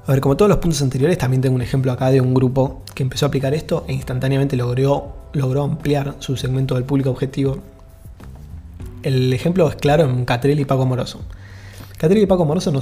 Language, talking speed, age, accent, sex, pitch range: Spanish, 205 wpm, 20-39, Argentinian, male, 125-145 Hz